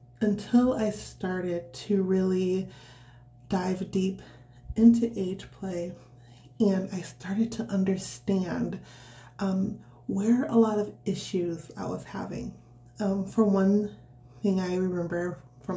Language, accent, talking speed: English, American, 120 wpm